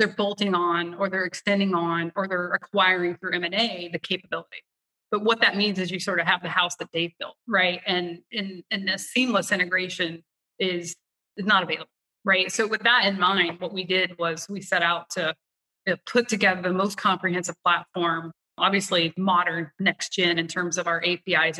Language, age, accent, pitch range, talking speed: English, 30-49, American, 175-200 Hz, 185 wpm